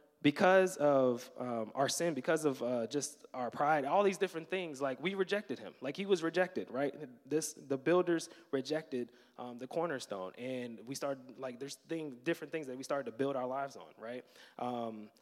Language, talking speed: English, 195 wpm